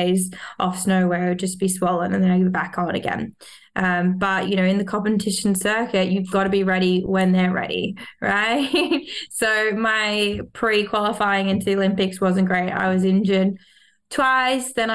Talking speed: 185 wpm